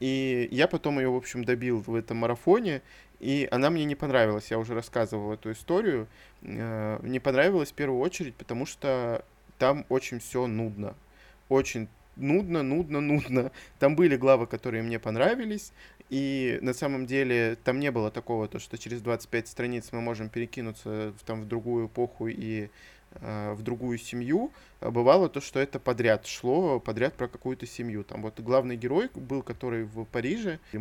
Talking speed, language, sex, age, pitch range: 160 wpm, Russian, male, 20-39, 115-135 Hz